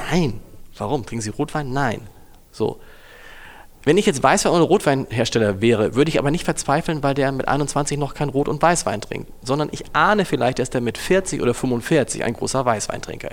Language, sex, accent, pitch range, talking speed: German, male, German, 115-150 Hz, 190 wpm